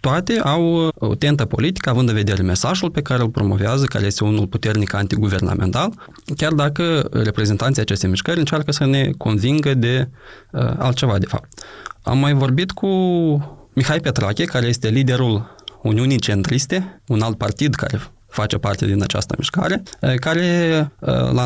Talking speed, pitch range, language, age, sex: 150 wpm, 105-145 Hz, Romanian, 20-39, male